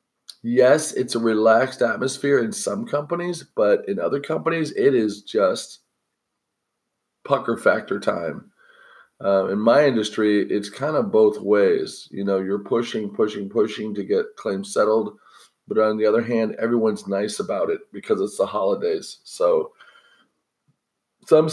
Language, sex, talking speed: English, male, 145 wpm